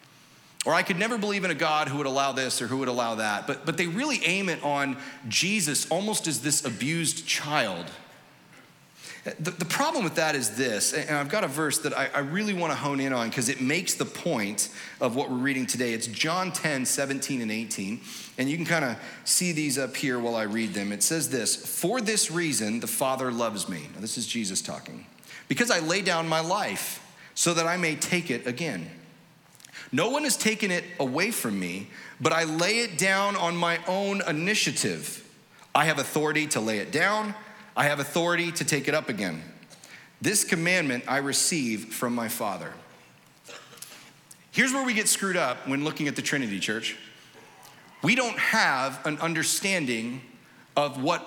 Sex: male